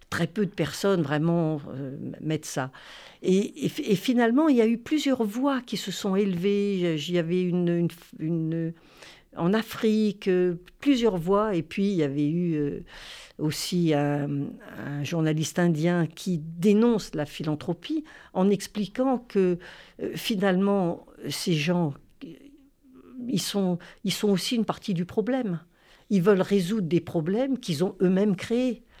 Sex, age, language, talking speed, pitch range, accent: female, 50-69, French, 145 wpm, 165-215 Hz, French